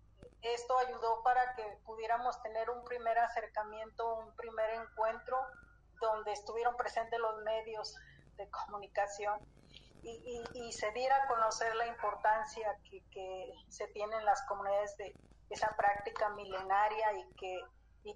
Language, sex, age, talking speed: Spanish, female, 40-59, 140 wpm